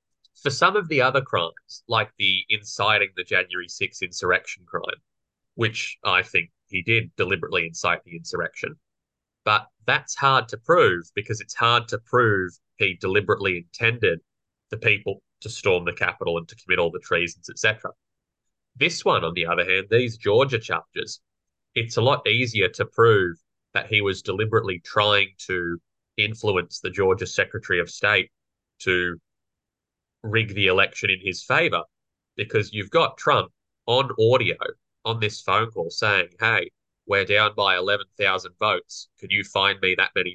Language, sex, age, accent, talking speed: English, male, 20-39, Australian, 160 wpm